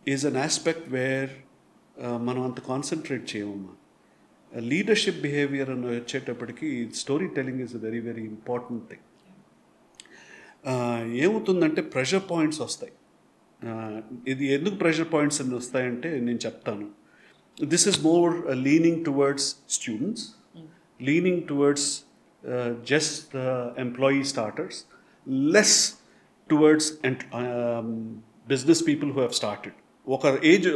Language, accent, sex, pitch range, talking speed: Telugu, native, male, 120-150 Hz, 120 wpm